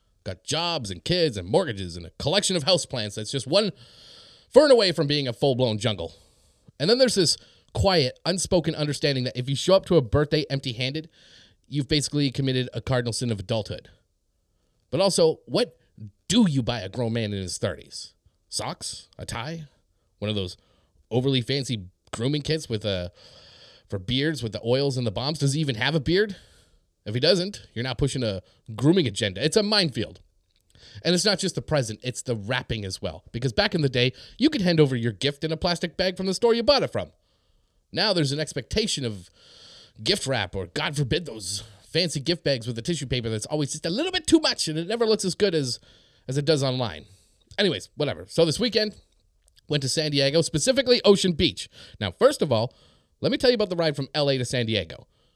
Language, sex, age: English, male, 30-49